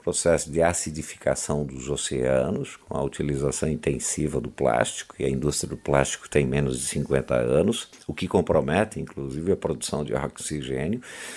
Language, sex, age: Portuguese, male, 50-69